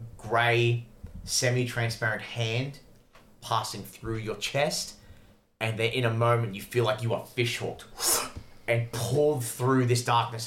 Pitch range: 105-120 Hz